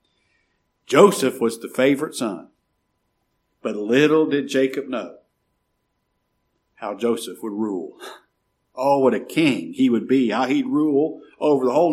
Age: 60-79